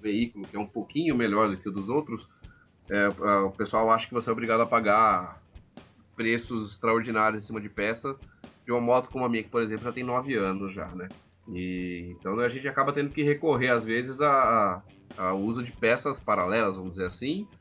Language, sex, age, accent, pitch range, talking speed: Portuguese, male, 20-39, Brazilian, 105-130 Hz, 205 wpm